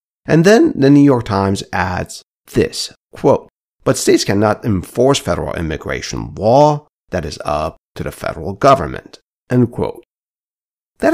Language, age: English, 50-69